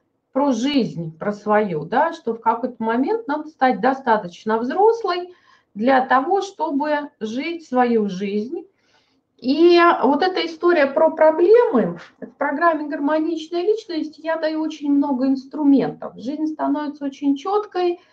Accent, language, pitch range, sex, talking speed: native, Russian, 225-310 Hz, female, 125 wpm